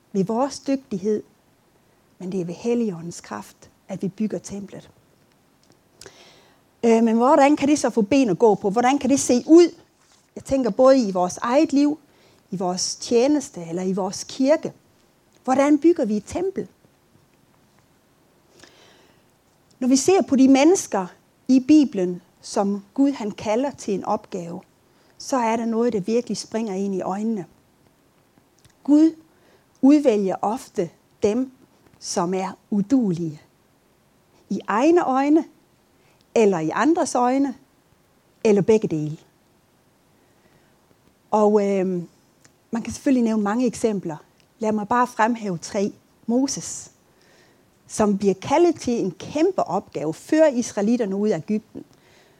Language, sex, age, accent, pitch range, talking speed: Danish, female, 40-59, native, 200-275 Hz, 130 wpm